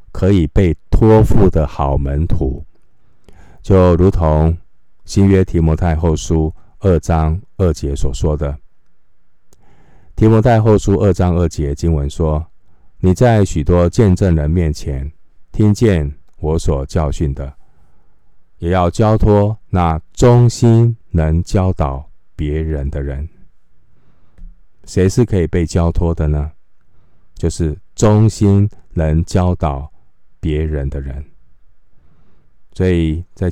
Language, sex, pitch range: Chinese, male, 80-95 Hz